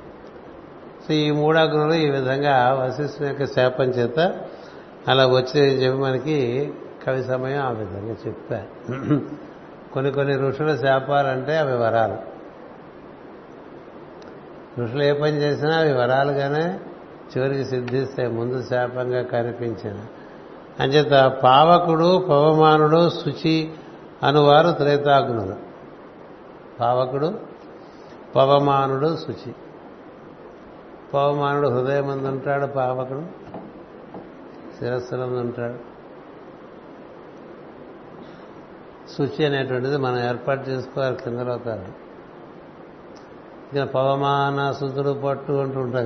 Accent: native